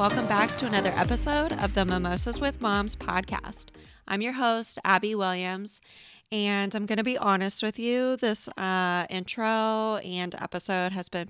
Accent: American